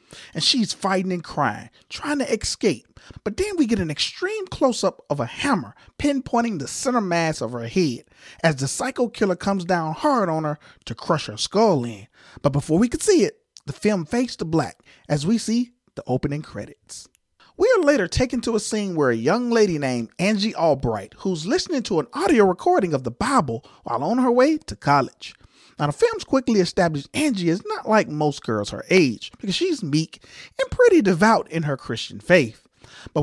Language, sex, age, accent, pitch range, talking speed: English, male, 30-49, American, 150-250 Hz, 195 wpm